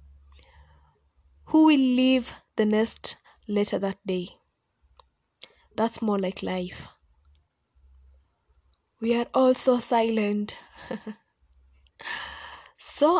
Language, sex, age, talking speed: English, female, 20-39, 80 wpm